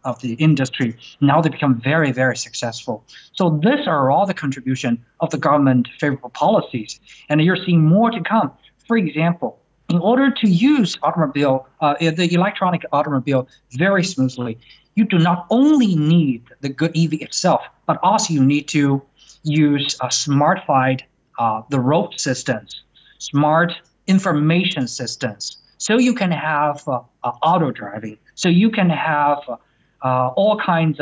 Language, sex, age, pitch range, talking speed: English, male, 50-69, 140-180 Hz, 155 wpm